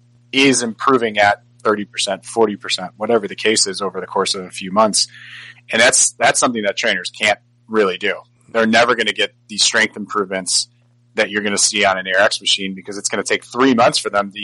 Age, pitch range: 30-49, 105-120 Hz